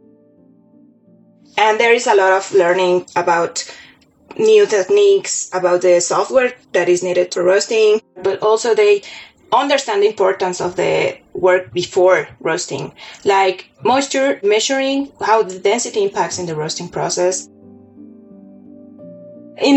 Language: English